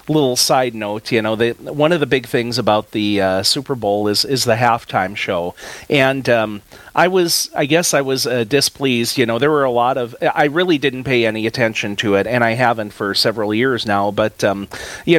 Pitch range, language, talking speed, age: 105-130 Hz, English, 220 wpm, 40-59